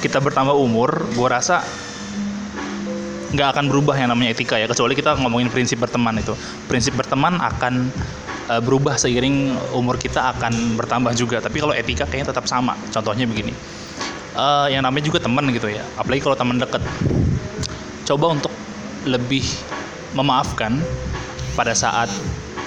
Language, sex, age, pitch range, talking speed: Indonesian, male, 20-39, 115-145 Hz, 140 wpm